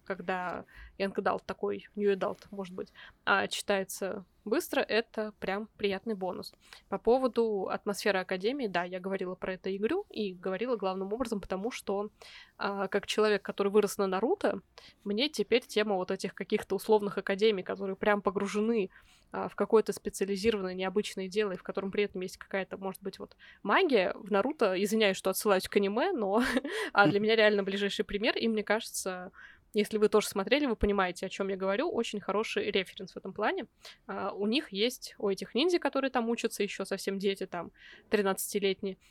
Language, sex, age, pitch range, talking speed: Russian, female, 20-39, 195-220 Hz, 165 wpm